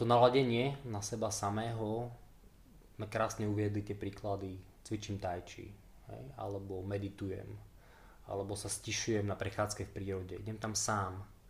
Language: Slovak